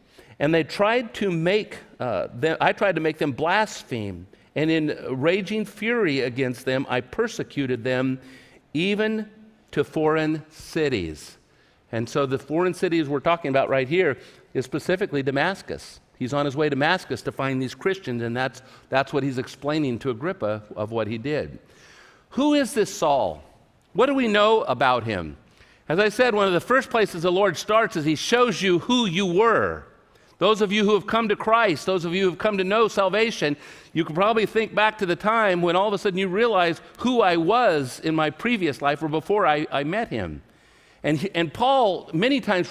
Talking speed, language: 195 wpm, English